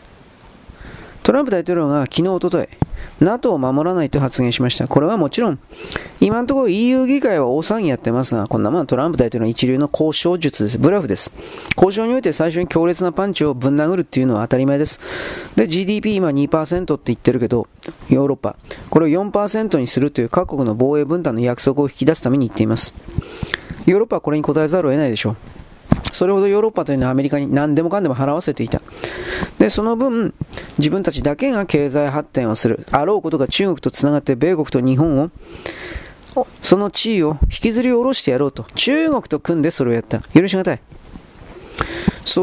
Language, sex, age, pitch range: Japanese, male, 40-59, 130-180 Hz